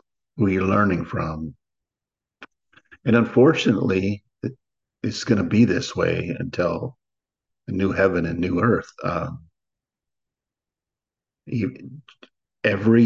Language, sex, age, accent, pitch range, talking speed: English, male, 50-69, American, 95-115 Hz, 105 wpm